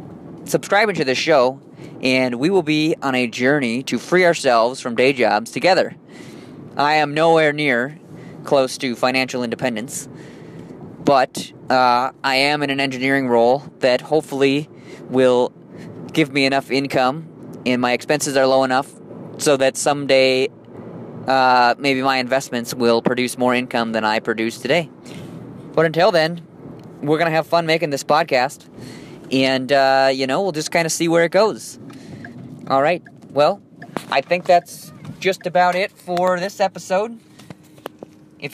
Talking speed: 155 wpm